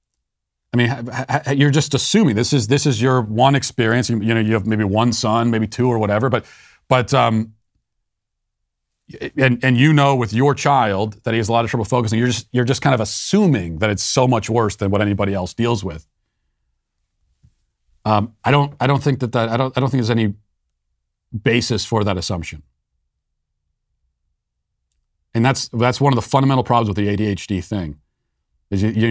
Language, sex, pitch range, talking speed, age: English, male, 95-135 Hz, 190 wpm, 40-59